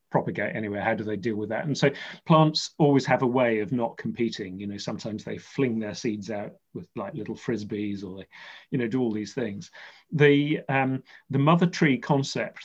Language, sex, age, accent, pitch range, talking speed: English, male, 40-59, British, 115-145 Hz, 210 wpm